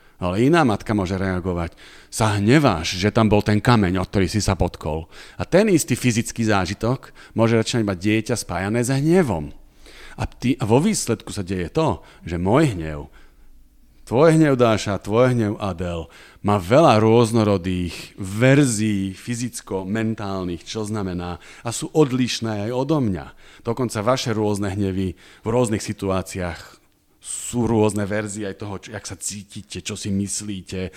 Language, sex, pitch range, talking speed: Slovak, male, 95-115 Hz, 145 wpm